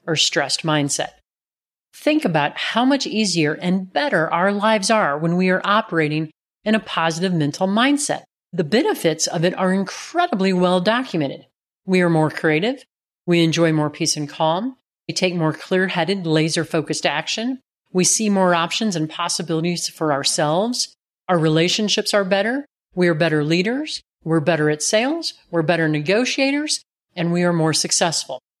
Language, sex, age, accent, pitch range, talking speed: English, female, 40-59, American, 160-210 Hz, 155 wpm